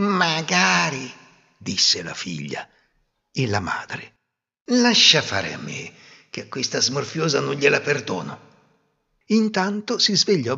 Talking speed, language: 120 wpm, Italian